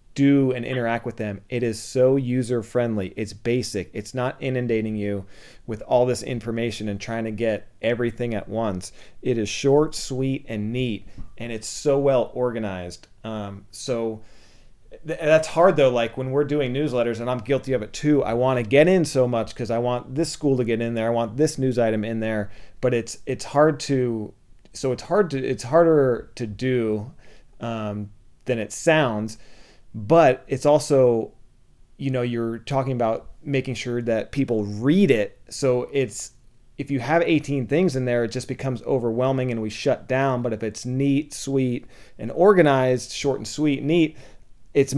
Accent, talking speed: American, 185 wpm